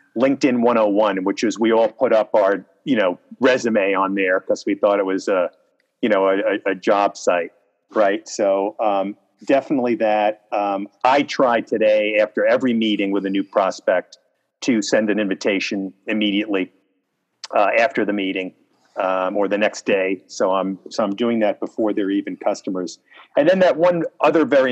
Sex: male